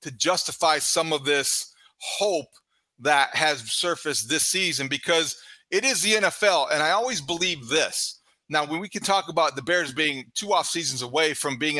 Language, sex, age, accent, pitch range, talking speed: English, male, 40-59, American, 145-180 Hz, 180 wpm